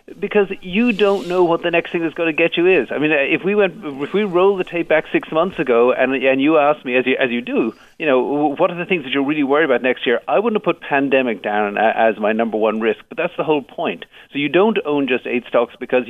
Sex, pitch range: male, 120-175 Hz